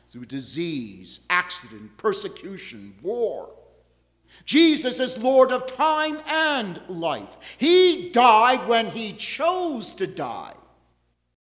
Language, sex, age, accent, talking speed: English, male, 50-69, American, 105 wpm